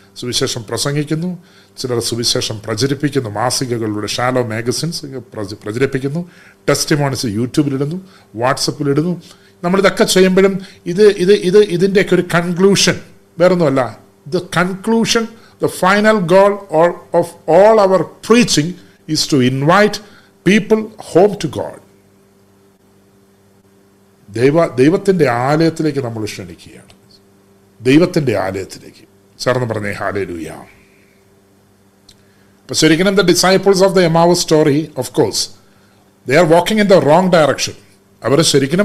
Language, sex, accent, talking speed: Malayalam, male, native, 100 wpm